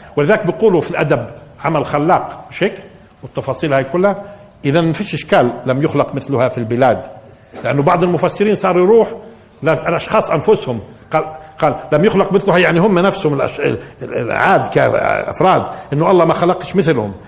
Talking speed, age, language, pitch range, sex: 140 wpm, 50-69, Arabic, 120-185 Hz, male